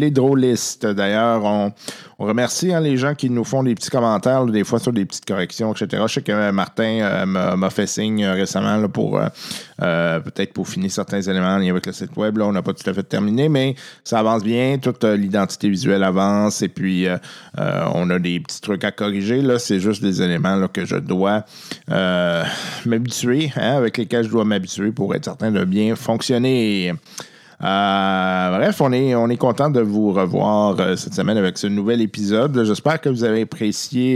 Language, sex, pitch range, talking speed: French, male, 100-130 Hz, 215 wpm